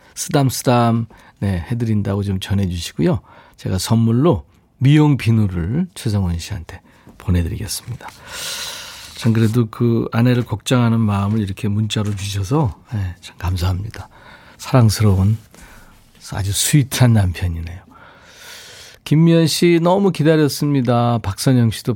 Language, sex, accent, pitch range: Korean, male, native, 100-140 Hz